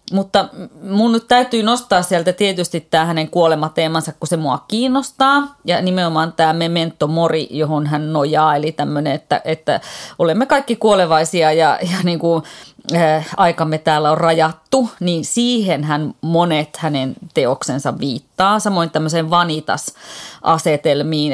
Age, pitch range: 30-49, 155-185 Hz